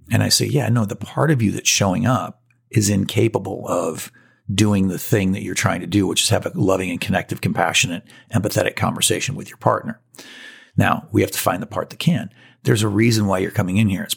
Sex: male